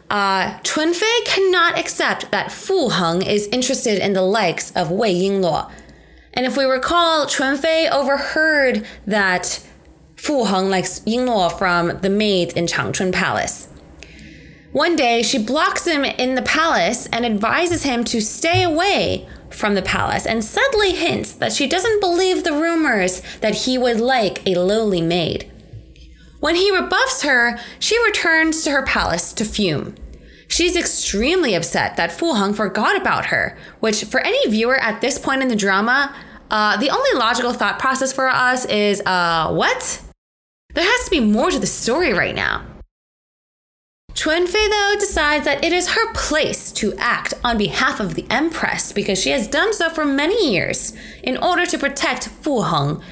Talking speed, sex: 165 wpm, female